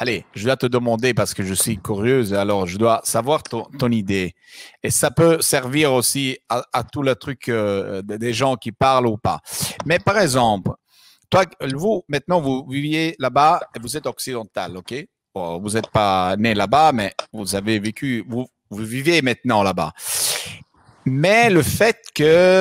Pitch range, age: 100-135 Hz, 50-69